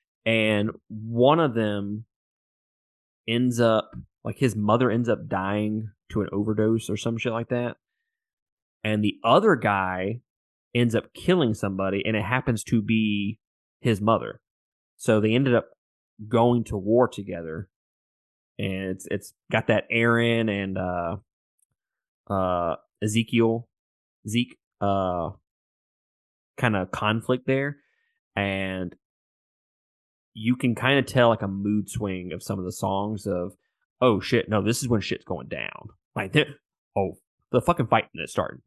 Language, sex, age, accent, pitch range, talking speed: English, male, 20-39, American, 95-120 Hz, 145 wpm